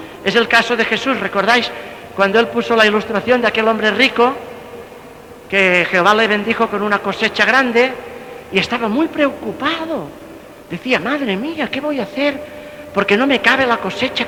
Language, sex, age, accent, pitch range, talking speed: Spanish, male, 50-69, Spanish, 205-295 Hz, 170 wpm